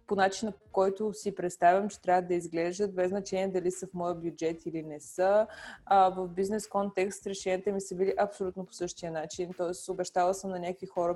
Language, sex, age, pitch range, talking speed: Bulgarian, female, 20-39, 180-210 Hz, 205 wpm